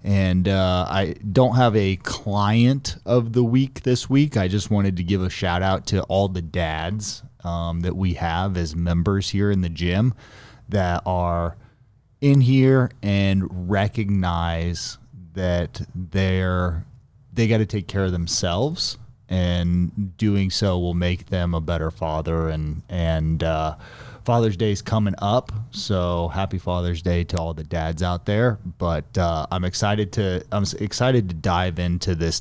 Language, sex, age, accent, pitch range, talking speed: English, male, 30-49, American, 90-115 Hz, 160 wpm